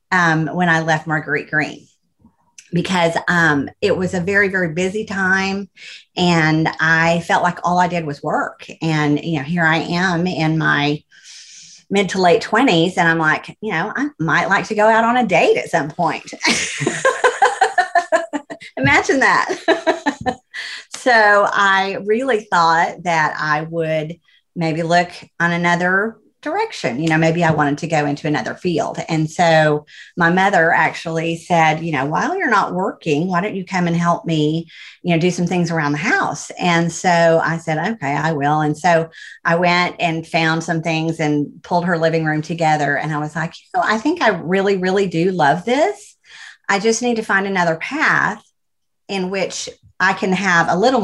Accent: American